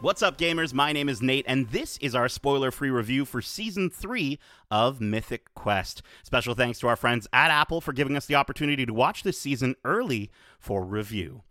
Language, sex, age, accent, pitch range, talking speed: English, male, 30-49, American, 105-145 Hz, 205 wpm